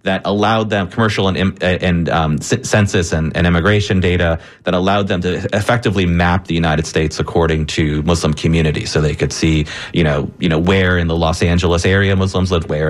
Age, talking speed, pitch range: 30-49, 195 wpm, 80-100 Hz